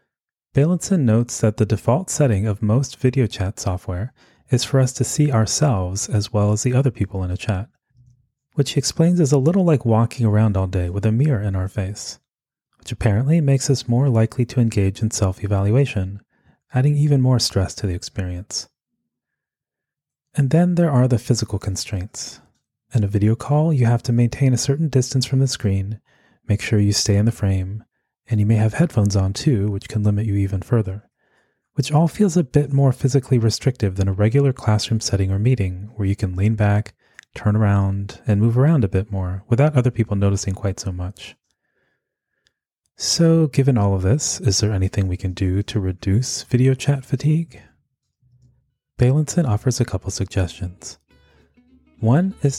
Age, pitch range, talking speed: 30-49, 100-135 Hz, 180 wpm